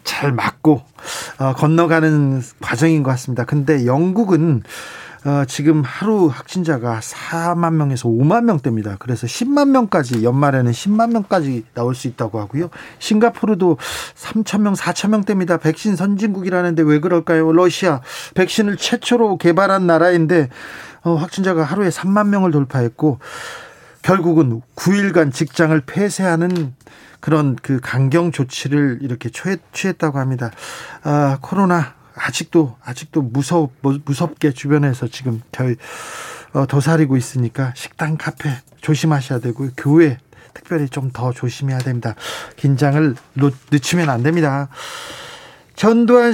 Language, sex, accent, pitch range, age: Korean, male, native, 135-185 Hz, 40-59